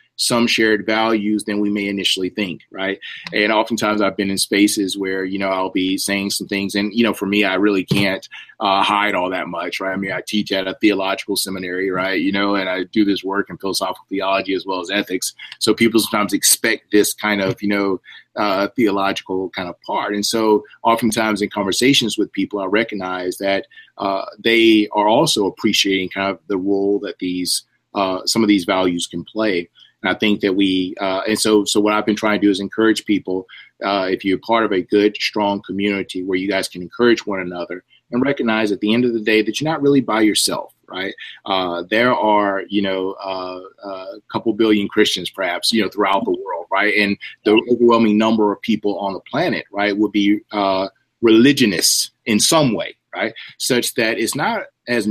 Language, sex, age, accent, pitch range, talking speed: English, male, 30-49, American, 95-110 Hz, 210 wpm